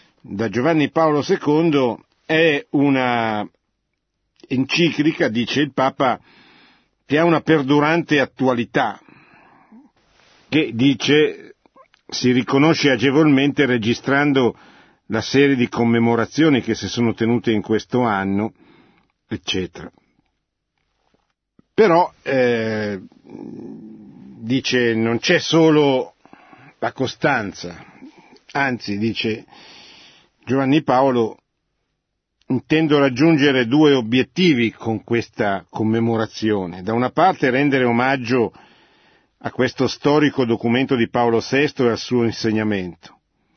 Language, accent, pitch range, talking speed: Italian, native, 115-150 Hz, 95 wpm